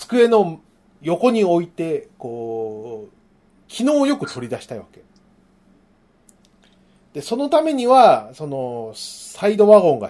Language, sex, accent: Japanese, male, native